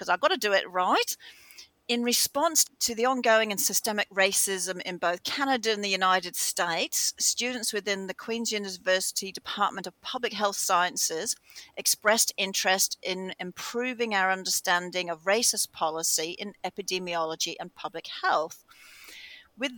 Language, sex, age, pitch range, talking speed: English, female, 40-59, 180-220 Hz, 140 wpm